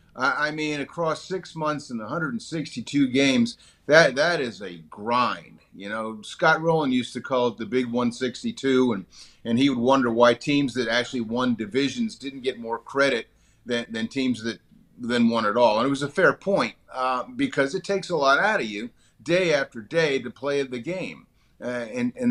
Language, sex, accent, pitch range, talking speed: English, male, American, 125-165 Hz, 195 wpm